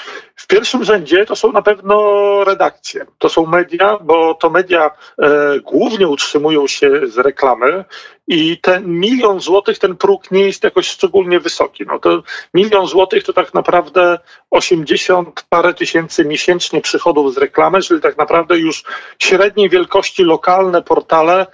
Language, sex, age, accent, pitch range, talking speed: Polish, male, 40-59, native, 160-255 Hz, 145 wpm